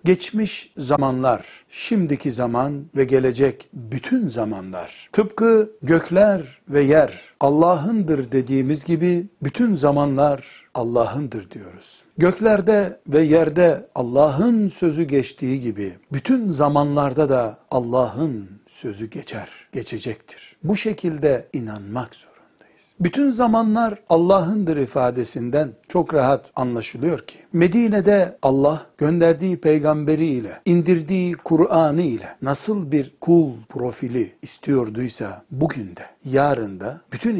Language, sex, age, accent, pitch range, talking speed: Turkish, male, 60-79, native, 130-175 Hz, 100 wpm